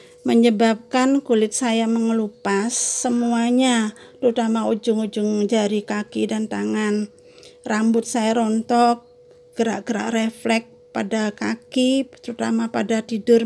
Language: Indonesian